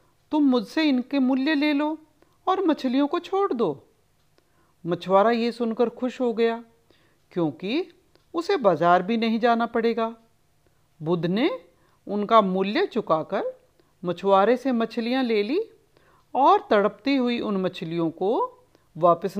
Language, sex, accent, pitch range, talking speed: Hindi, female, native, 190-300 Hz, 125 wpm